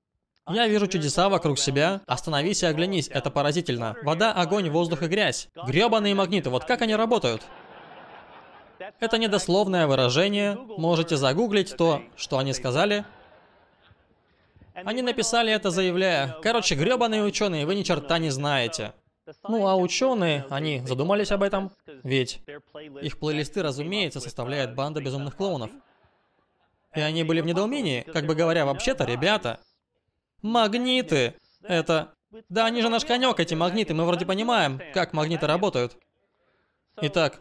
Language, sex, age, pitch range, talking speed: Russian, male, 20-39, 145-205 Hz, 135 wpm